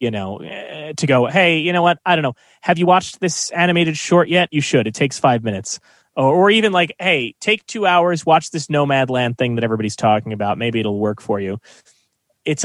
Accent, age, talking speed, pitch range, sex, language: American, 30-49, 220 wpm, 125-160 Hz, male, English